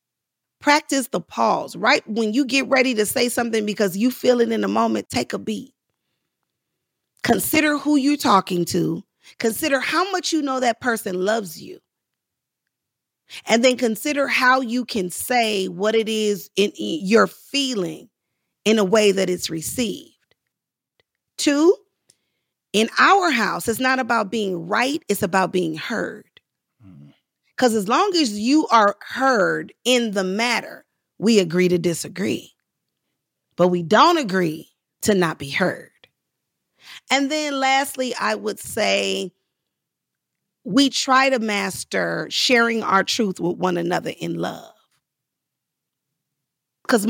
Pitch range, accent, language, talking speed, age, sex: 190-260 Hz, American, English, 140 wpm, 40-59, female